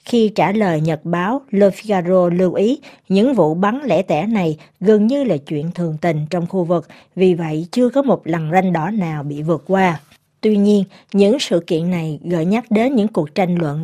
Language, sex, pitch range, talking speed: Vietnamese, female, 180-235 Hz, 215 wpm